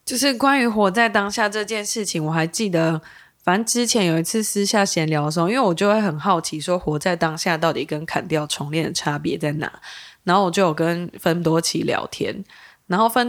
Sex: female